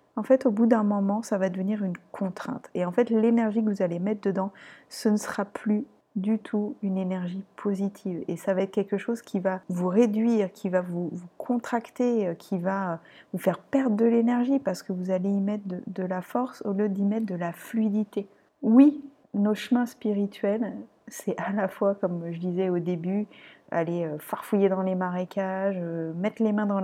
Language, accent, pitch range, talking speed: French, French, 190-220 Hz, 200 wpm